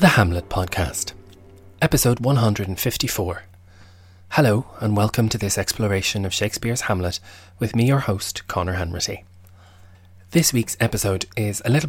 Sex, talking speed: male, 130 wpm